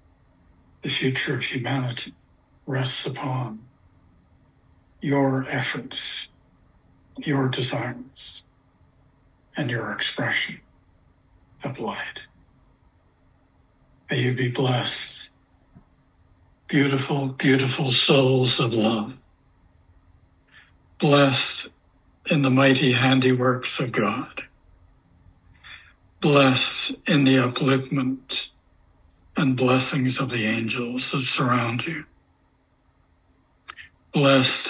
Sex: male